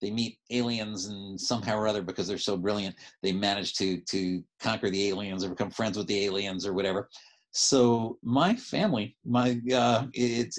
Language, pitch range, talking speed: English, 95-115 Hz, 180 wpm